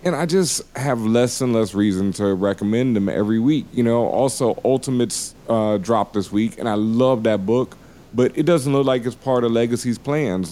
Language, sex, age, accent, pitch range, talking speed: English, male, 30-49, American, 105-130 Hz, 205 wpm